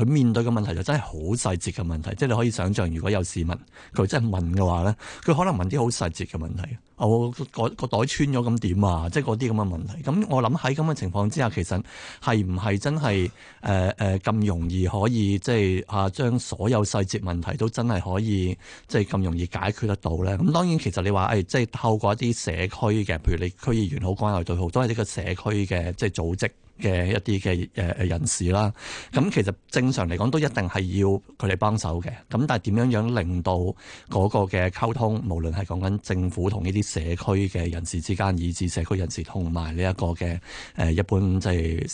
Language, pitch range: Chinese, 90-110 Hz